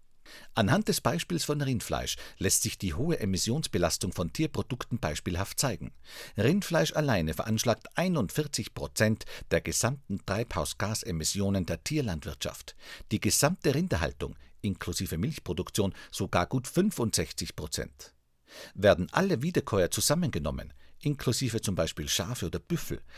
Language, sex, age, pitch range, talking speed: German, male, 50-69, 90-135 Hz, 110 wpm